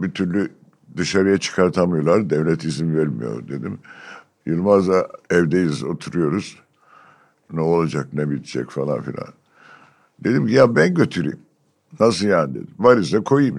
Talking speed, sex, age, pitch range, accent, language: 115 wpm, male, 60-79, 80-100 Hz, native, Turkish